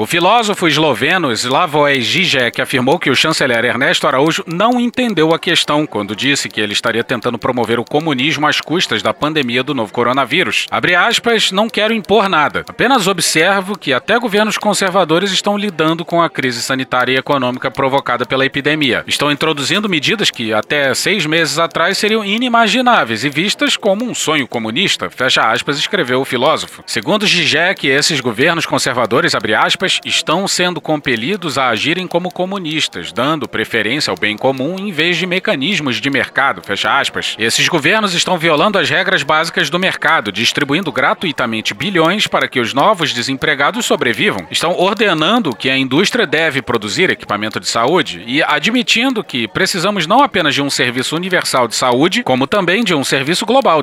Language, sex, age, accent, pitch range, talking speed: Portuguese, male, 40-59, Brazilian, 140-205 Hz, 165 wpm